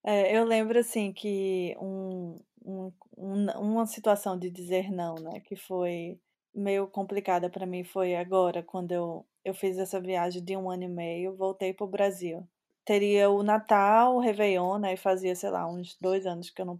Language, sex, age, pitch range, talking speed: Portuguese, female, 20-39, 185-230 Hz, 185 wpm